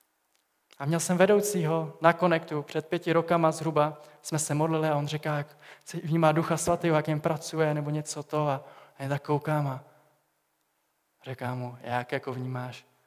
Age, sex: 20-39, male